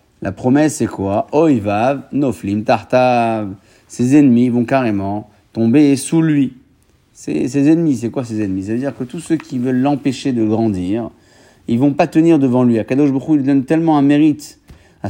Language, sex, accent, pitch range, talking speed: French, male, French, 110-140 Hz, 185 wpm